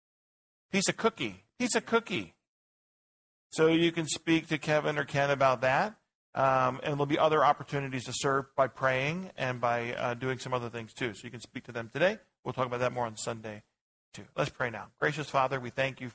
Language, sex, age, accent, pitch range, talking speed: English, male, 40-59, American, 125-150 Hz, 210 wpm